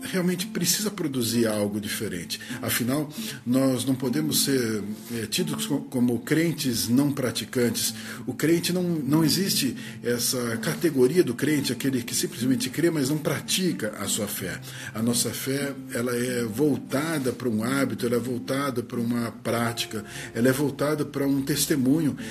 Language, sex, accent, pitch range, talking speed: Portuguese, male, Brazilian, 120-155 Hz, 150 wpm